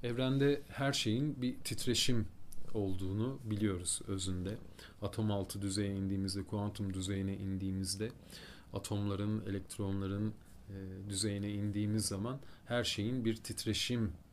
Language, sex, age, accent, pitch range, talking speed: Turkish, male, 40-59, native, 95-115 Hz, 105 wpm